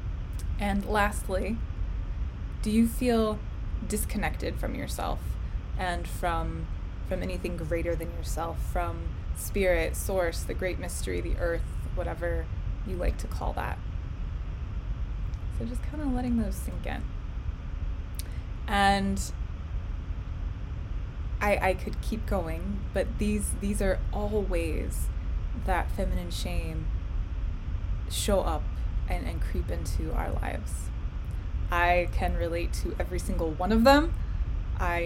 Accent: American